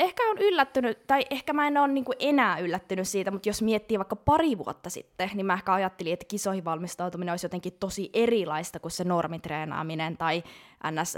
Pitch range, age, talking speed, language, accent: 180-240 Hz, 20-39, 180 wpm, Finnish, native